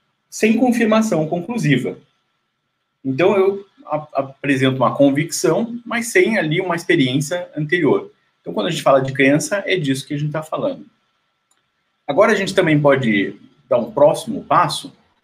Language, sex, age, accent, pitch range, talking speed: Portuguese, male, 30-49, Brazilian, 130-175 Hz, 150 wpm